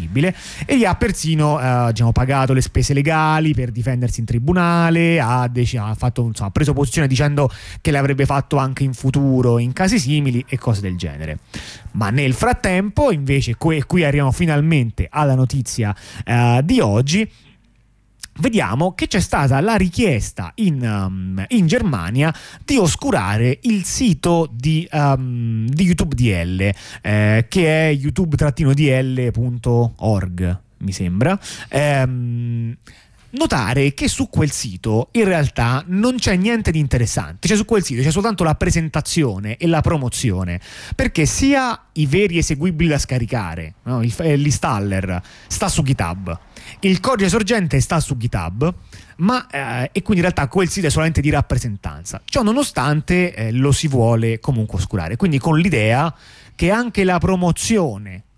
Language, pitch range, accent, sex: Italian, 115-165 Hz, native, male